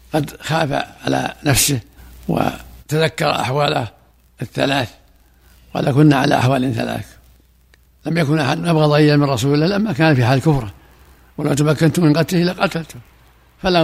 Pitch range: 125-155 Hz